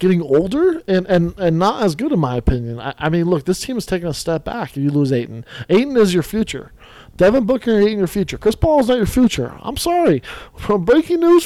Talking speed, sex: 240 wpm, male